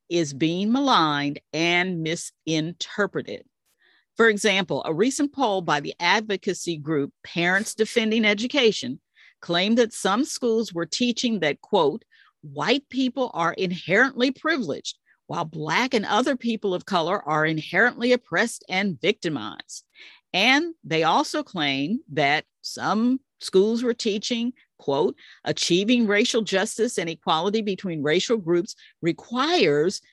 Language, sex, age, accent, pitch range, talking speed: English, female, 50-69, American, 175-245 Hz, 120 wpm